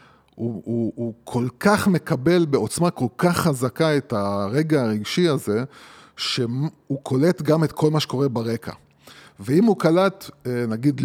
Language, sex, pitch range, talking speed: Hebrew, male, 115-155 Hz, 145 wpm